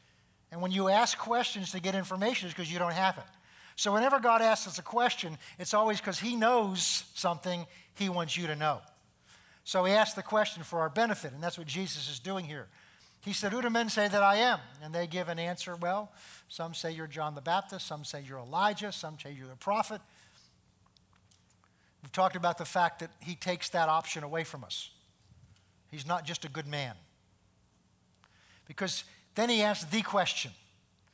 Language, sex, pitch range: English, male, 145-195 Hz